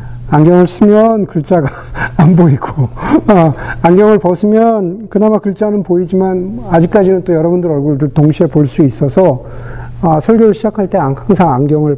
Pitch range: 120-180 Hz